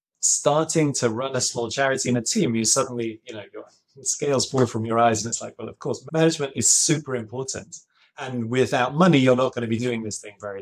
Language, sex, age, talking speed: English, male, 20-39, 230 wpm